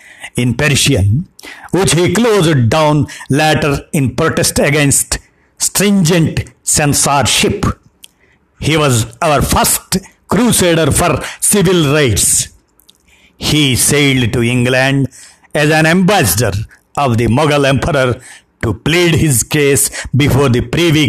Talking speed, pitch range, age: 110 wpm, 125-170 Hz, 60-79